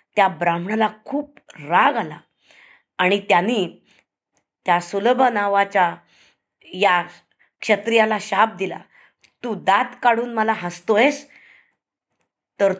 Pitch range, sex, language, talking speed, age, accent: 195-255 Hz, female, Marathi, 95 wpm, 20-39, native